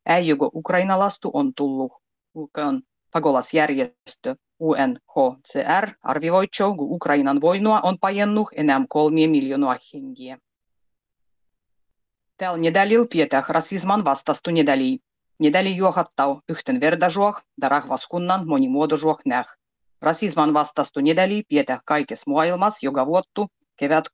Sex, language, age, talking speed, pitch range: female, Finnish, 30-49, 105 wpm, 145-200 Hz